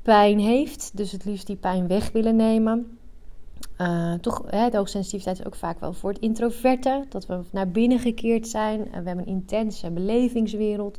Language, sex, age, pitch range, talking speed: Dutch, female, 30-49, 175-205 Hz, 185 wpm